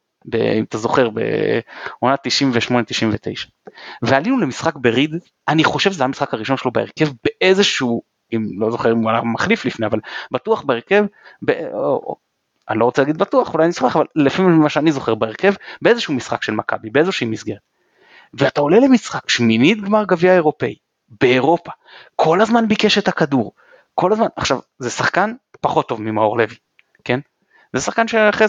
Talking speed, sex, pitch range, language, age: 160 wpm, male, 120-190 Hz, Hebrew, 30-49